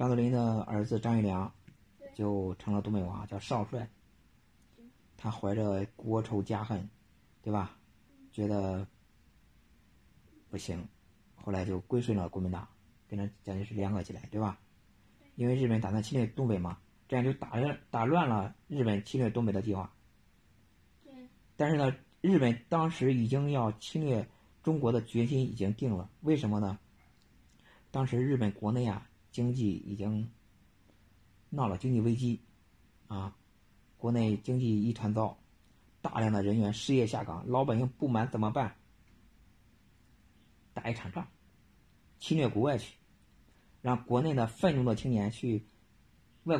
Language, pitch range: Chinese, 100-125 Hz